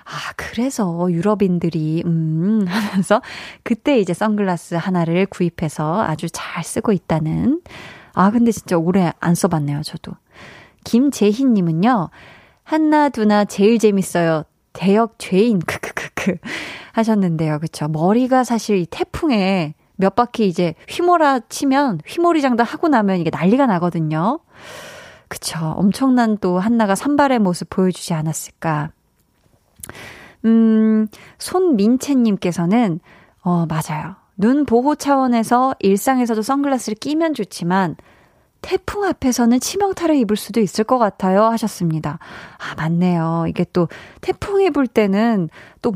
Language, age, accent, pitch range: Korean, 20-39, native, 175-245 Hz